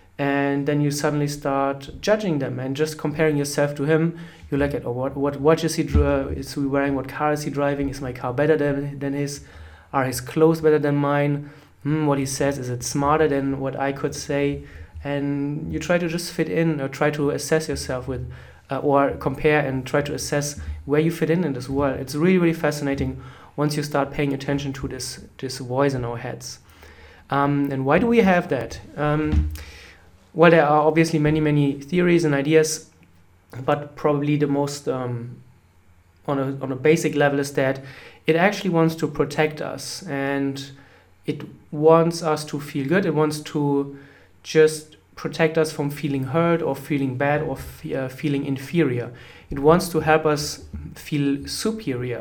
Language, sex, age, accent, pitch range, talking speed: English, male, 20-39, German, 135-155 Hz, 190 wpm